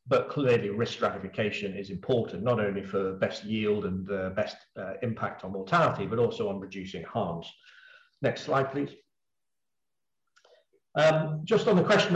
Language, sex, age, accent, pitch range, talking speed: English, male, 40-59, British, 110-145 Hz, 150 wpm